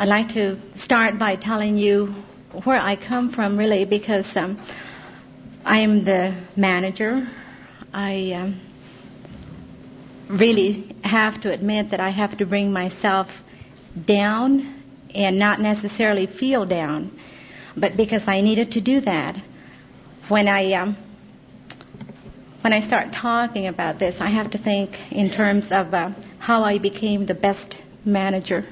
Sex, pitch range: female, 190-210 Hz